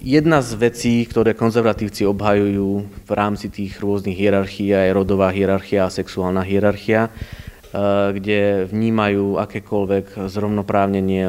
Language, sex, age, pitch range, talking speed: Slovak, male, 30-49, 95-110 Hz, 110 wpm